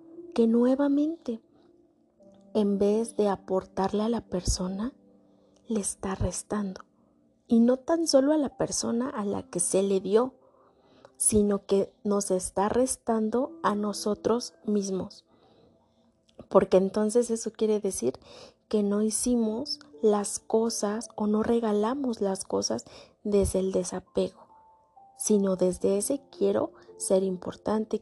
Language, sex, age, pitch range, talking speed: Spanish, female, 30-49, 195-240 Hz, 120 wpm